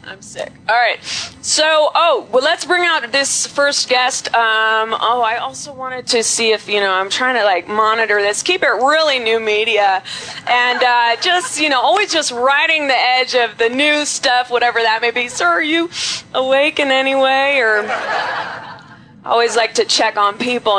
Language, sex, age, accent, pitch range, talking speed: English, female, 20-39, American, 220-280 Hz, 195 wpm